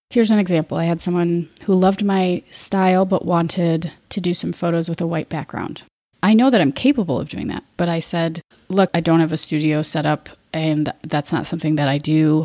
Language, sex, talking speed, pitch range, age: English, female, 220 wpm, 165-195 Hz, 30-49